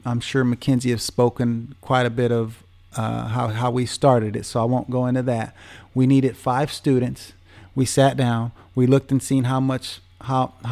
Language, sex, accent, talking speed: English, male, American, 195 wpm